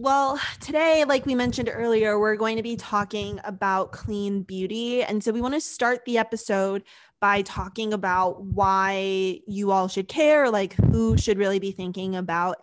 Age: 20-39